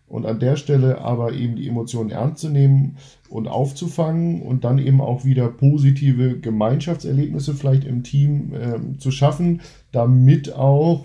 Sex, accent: male, German